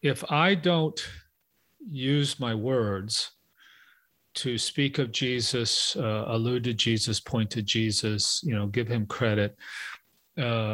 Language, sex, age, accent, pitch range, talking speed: English, male, 40-59, American, 110-140 Hz, 130 wpm